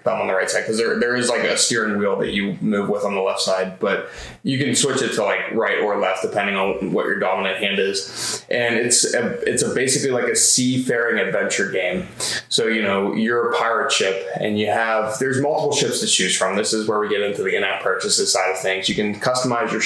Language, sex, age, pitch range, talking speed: English, male, 20-39, 105-125 Hz, 240 wpm